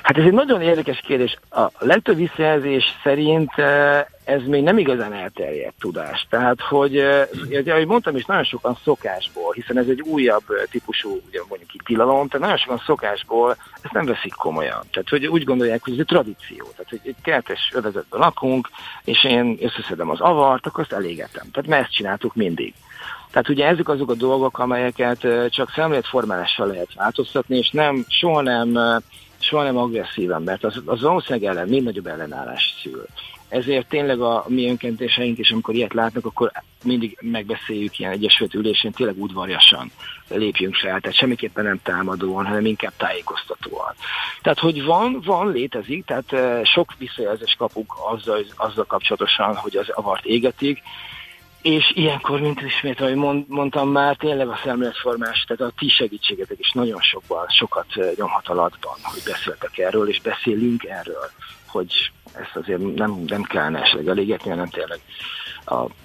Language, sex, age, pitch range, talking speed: Hungarian, male, 50-69, 120-160 Hz, 155 wpm